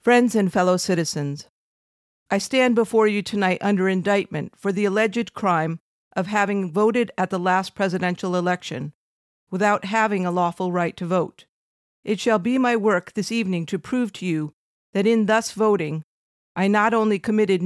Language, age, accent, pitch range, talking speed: English, 50-69, American, 180-220 Hz, 165 wpm